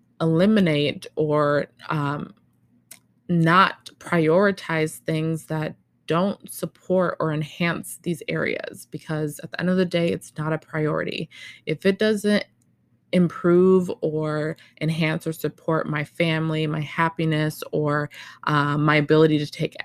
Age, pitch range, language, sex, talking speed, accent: 20-39, 155-185 Hz, English, female, 125 wpm, American